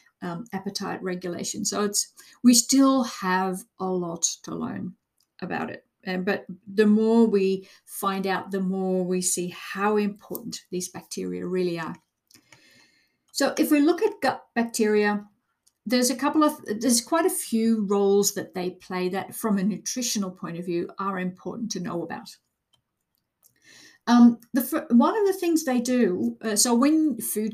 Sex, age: female, 50-69